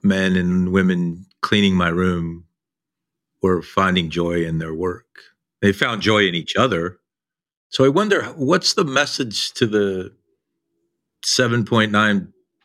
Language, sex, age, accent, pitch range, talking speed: English, male, 50-69, American, 85-105 Hz, 130 wpm